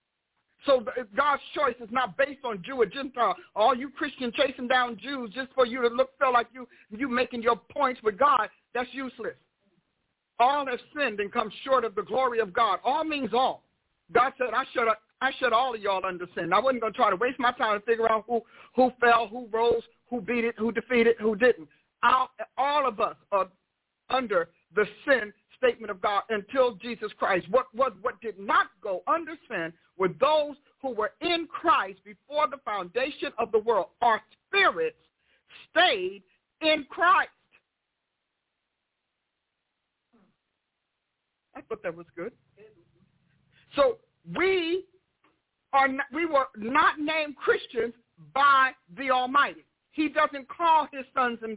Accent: American